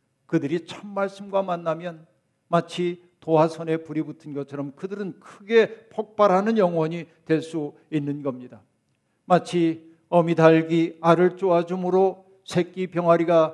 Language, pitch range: Korean, 150-195 Hz